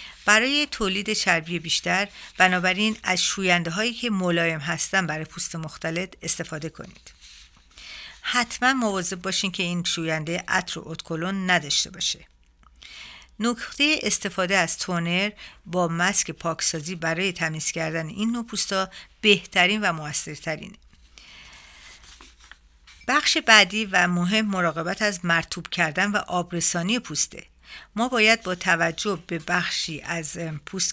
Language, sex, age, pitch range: Persian, female, 50-69, 165-195 Hz